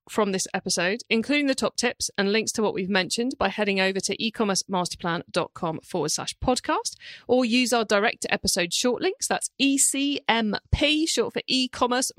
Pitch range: 200-260 Hz